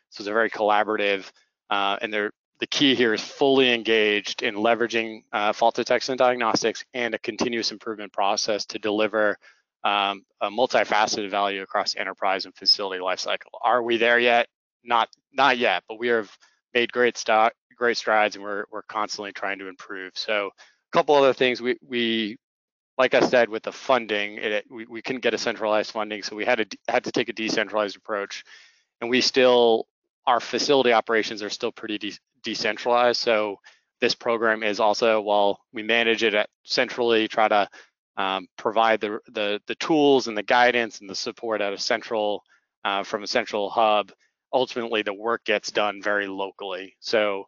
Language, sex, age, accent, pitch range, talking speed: English, male, 20-39, American, 105-120 Hz, 180 wpm